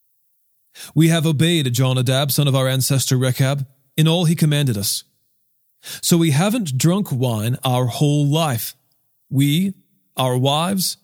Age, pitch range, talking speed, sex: 40-59, 130-160 Hz, 135 wpm, male